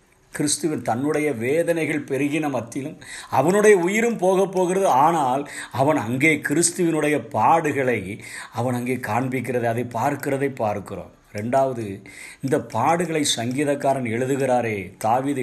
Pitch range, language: 130-190 Hz, Tamil